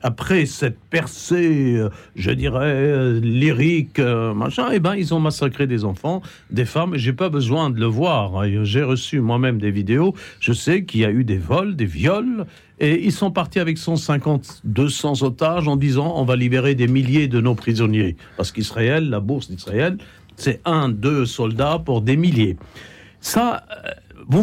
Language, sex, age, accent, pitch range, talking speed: French, male, 50-69, French, 125-180 Hz, 175 wpm